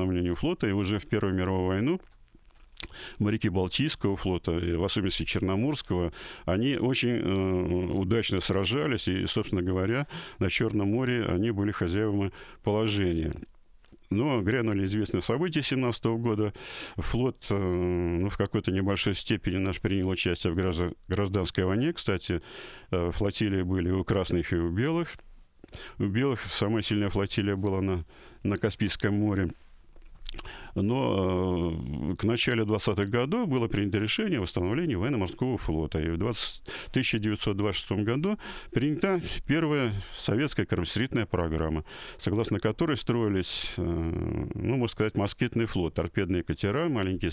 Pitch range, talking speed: 90-115 Hz, 125 wpm